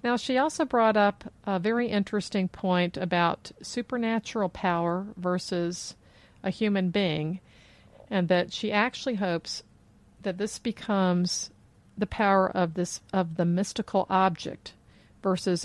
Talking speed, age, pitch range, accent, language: 125 wpm, 50-69, 170-195 Hz, American, English